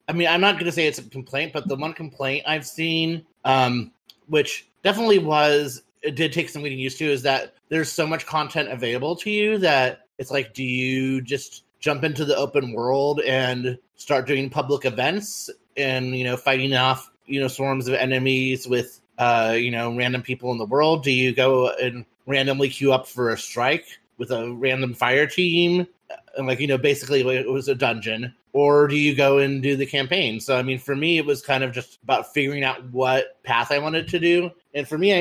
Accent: American